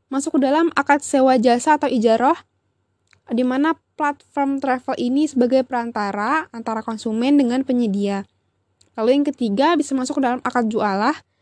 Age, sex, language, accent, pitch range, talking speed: 10-29, female, Indonesian, native, 230-280 Hz, 145 wpm